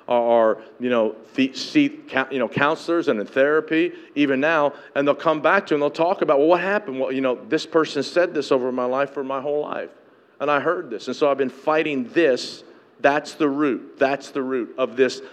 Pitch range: 130-170 Hz